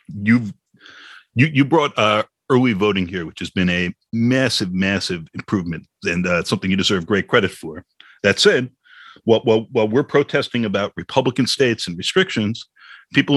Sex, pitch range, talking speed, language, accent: male, 100-130 Hz, 160 wpm, English, American